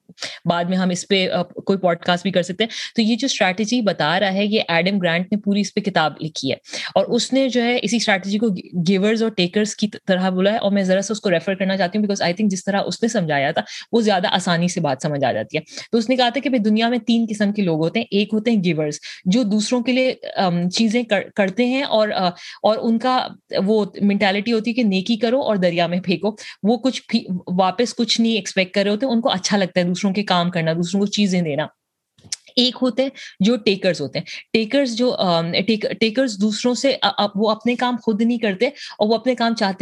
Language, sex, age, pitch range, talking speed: Urdu, female, 30-49, 185-235 Hz, 205 wpm